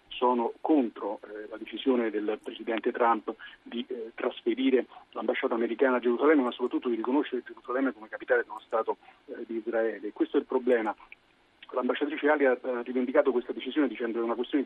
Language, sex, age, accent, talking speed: Italian, male, 30-49, native, 175 wpm